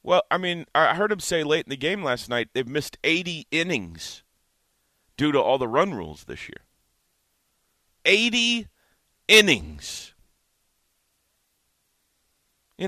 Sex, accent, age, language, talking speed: male, American, 40-59, English, 130 wpm